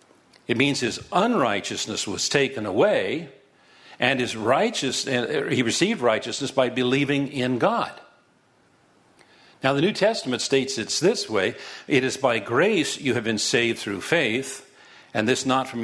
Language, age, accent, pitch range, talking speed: English, 50-69, American, 125-150 Hz, 145 wpm